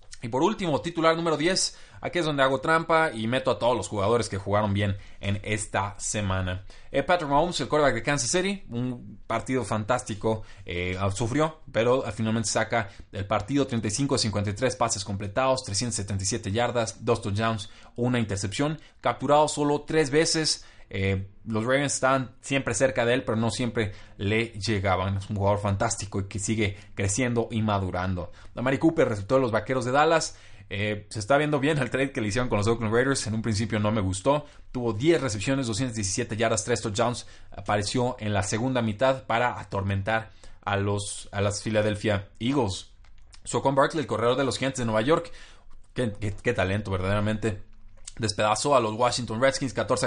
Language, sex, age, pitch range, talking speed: Spanish, male, 20-39, 100-130 Hz, 175 wpm